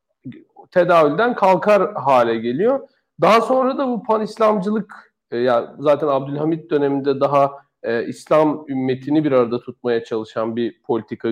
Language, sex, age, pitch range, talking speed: Turkish, male, 40-59, 125-165 Hz, 125 wpm